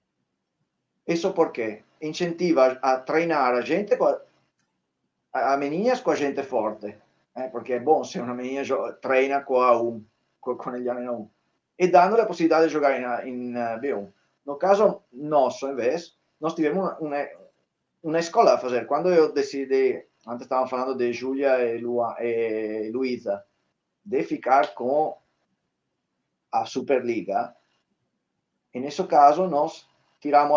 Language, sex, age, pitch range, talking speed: Portuguese, male, 30-49, 125-160 Hz, 135 wpm